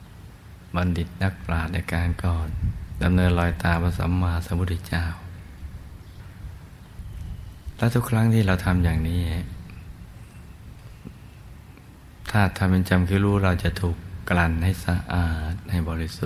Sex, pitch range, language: male, 85-100 Hz, Thai